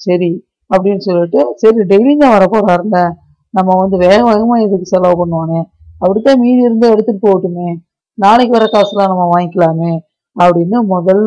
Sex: female